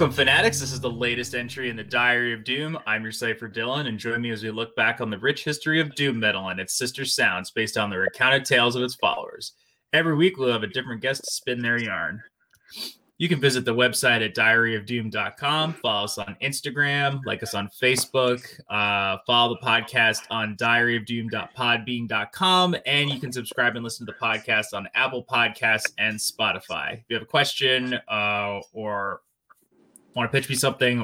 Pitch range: 110-130 Hz